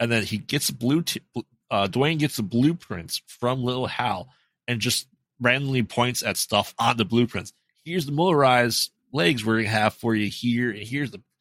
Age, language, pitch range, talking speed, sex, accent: 30-49, English, 95-120 Hz, 180 wpm, male, American